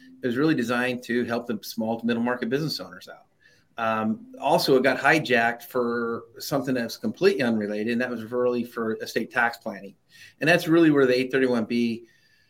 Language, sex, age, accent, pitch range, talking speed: English, male, 30-49, American, 115-140 Hz, 185 wpm